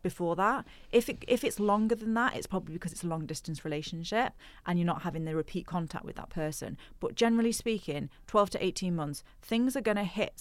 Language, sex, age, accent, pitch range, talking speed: English, female, 30-49, British, 165-200 Hz, 225 wpm